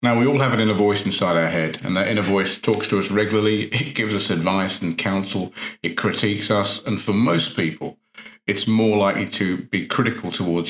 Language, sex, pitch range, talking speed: English, male, 95-115 Hz, 215 wpm